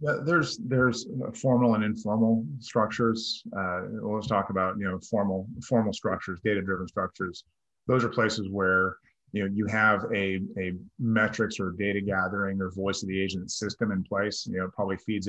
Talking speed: 175 wpm